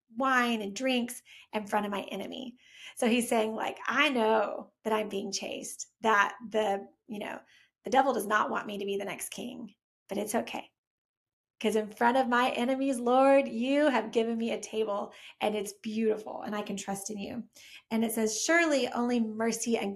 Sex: female